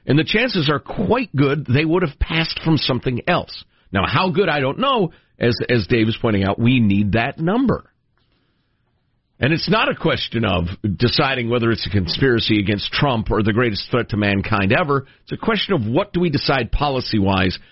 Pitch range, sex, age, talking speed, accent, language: 100-160 Hz, male, 50-69, 195 wpm, American, English